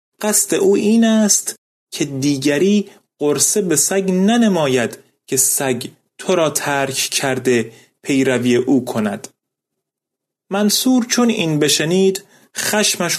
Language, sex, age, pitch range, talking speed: Persian, male, 30-49, 135-195 Hz, 110 wpm